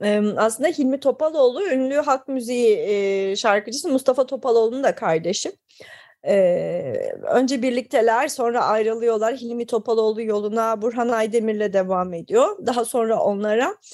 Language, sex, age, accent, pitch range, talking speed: Turkish, female, 30-49, native, 195-260 Hz, 110 wpm